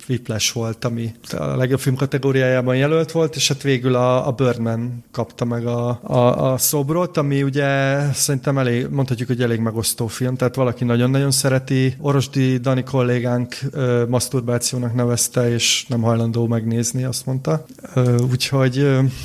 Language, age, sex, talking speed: Hungarian, 30-49, male, 150 wpm